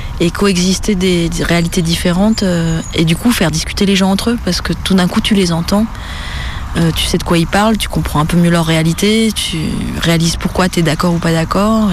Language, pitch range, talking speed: French, 160-195 Hz, 230 wpm